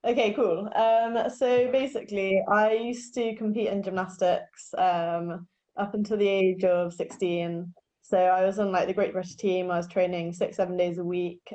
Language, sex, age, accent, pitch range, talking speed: English, female, 10-29, British, 175-200 Hz, 180 wpm